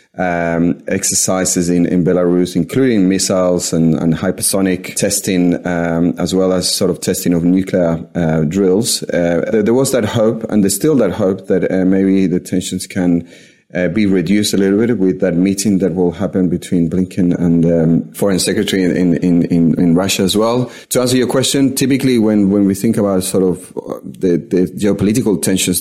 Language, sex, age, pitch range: English, male, 30-49, 85-100 Hz